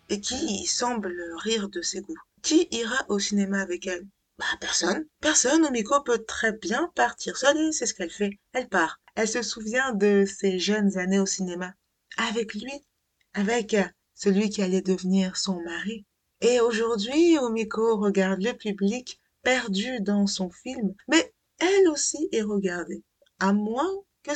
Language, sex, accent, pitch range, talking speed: French, female, French, 190-255 Hz, 160 wpm